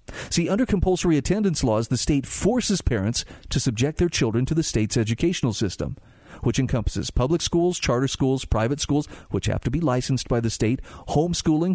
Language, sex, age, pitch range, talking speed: English, male, 40-59, 115-165 Hz, 180 wpm